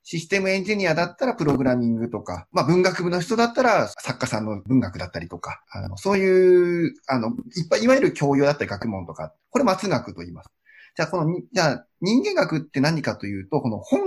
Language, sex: Japanese, male